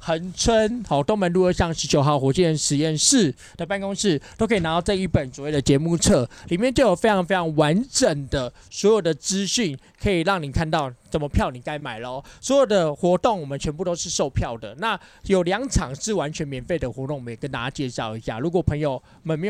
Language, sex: Chinese, male